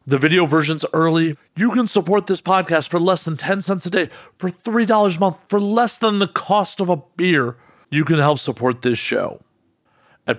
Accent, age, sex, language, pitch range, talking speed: American, 40-59, male, English, 130-180 Hz, 200 wpm